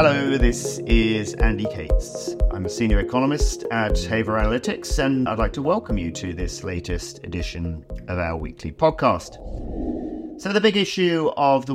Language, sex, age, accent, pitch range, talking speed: English, male, 40-59, British, 95-125 Hz, 165 wpm